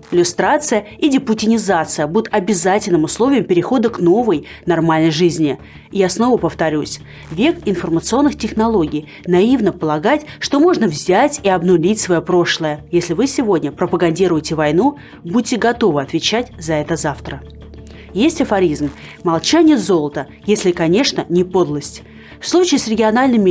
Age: 30-49